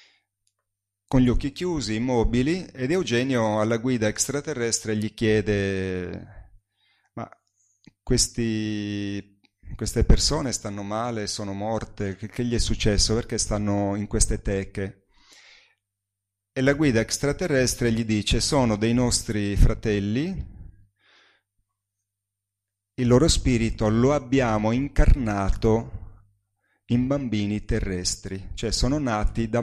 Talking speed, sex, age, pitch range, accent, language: 105 wpm, male, 30-49, 100-120 Hz, native, Italian